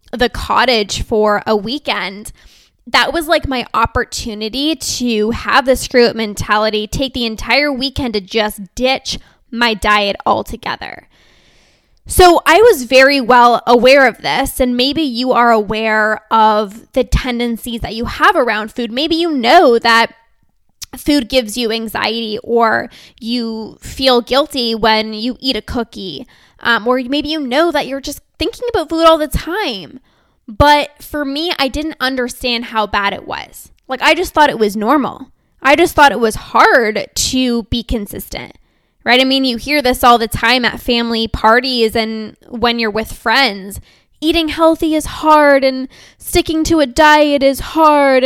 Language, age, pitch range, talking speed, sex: English, 10-29, 230-295 Hz, 165 wpm, female